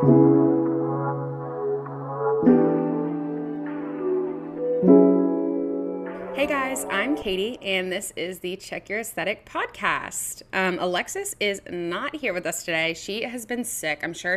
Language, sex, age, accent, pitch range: English, female, 20-39, American, 165-205 Hz